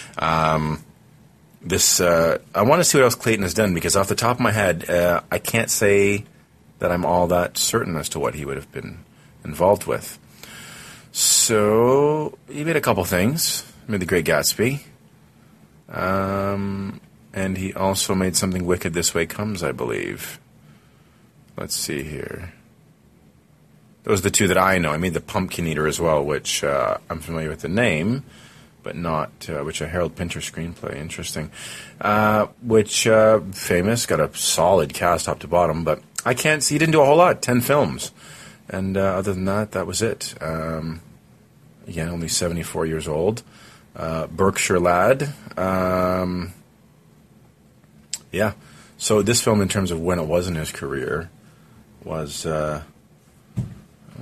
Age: 30-49